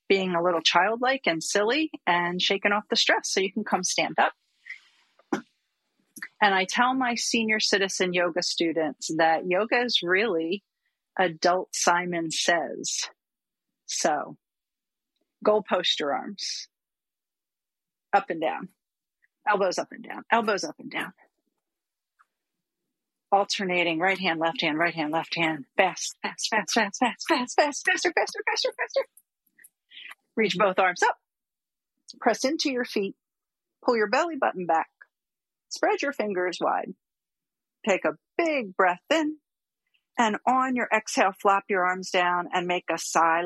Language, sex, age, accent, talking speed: English, female, 40-59, American, 140 wpm